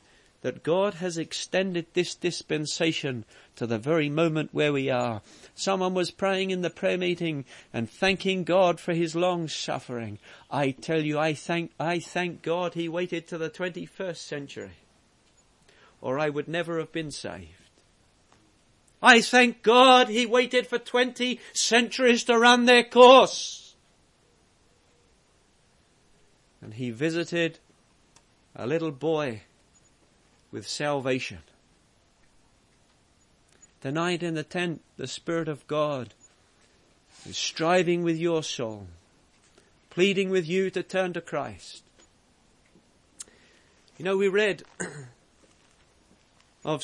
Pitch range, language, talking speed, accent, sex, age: 150-190 Hz, English, 120 wpm, British, male, 40-59